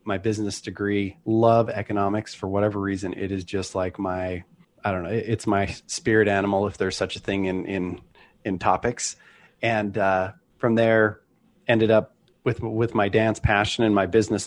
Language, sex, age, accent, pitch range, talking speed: English, male, 30-49, American, 100-115 Hz, 180 wpm